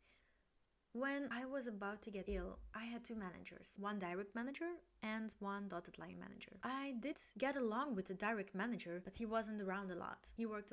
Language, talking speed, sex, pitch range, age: English, 195 wpm, female, 195-260 Hz, 20-39